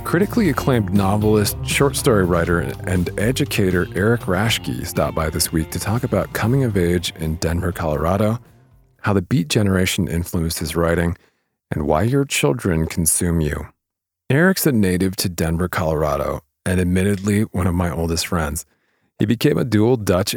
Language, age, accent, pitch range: English, 40-59, American, 85-105 Hz